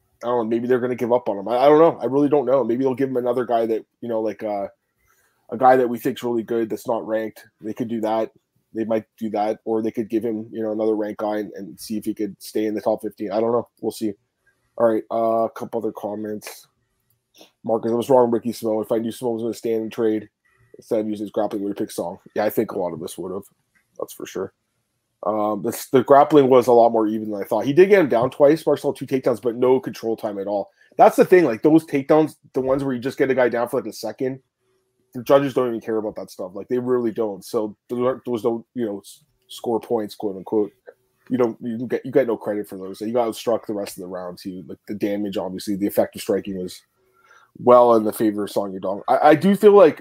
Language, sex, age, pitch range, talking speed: English, male, 20-39, 110-125 Hz, 270 wpm